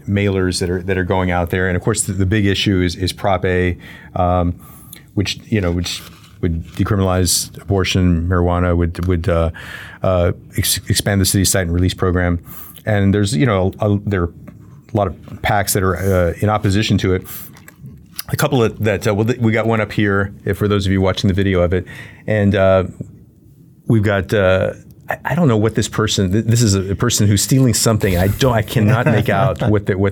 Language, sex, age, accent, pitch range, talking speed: English, male, 30-49, American, 95-110 Hz, 215 wpm